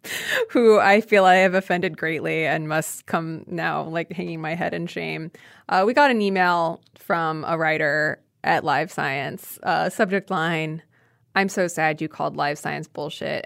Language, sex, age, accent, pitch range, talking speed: English, female, 20-39, American, 165-215 Hz, 175 wpm